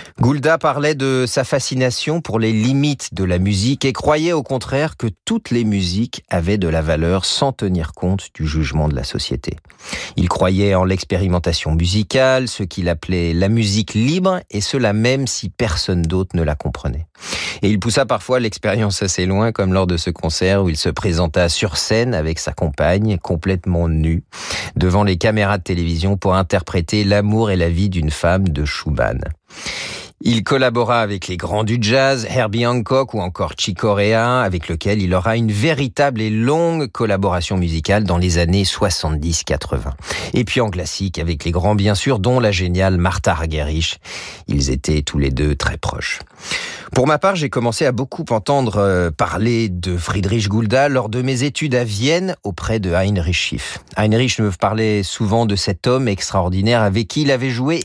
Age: 40-59